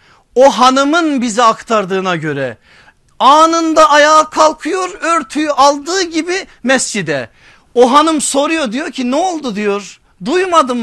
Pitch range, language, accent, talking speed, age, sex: 195-280 Hz, Turkish, native, 115 wpm, 50-69, male